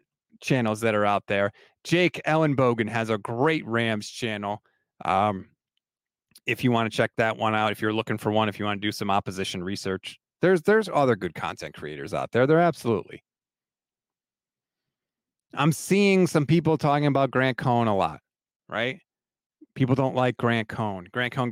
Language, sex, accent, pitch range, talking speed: English, male, American, 120-175 Hz, 175 wpm